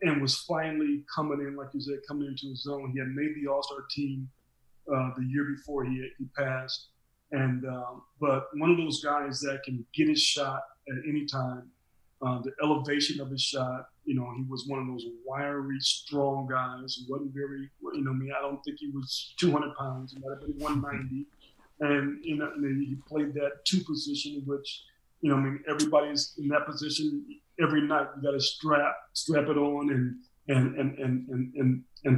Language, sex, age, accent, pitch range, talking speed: English, male, 30-49, American, 135-155 Hz, 205 wpm